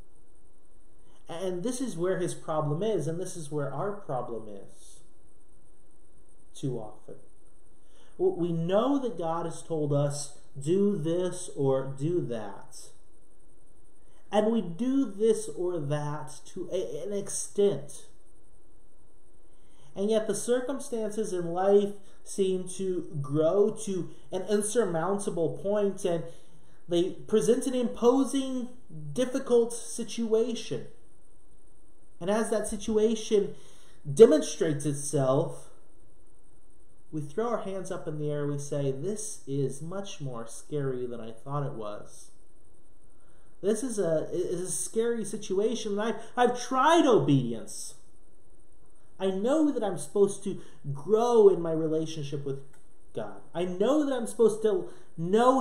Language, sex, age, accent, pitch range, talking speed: English, male, 30-49, American, 150-220 Hz, 125 wpm